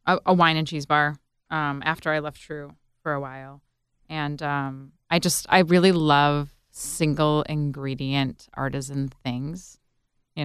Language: English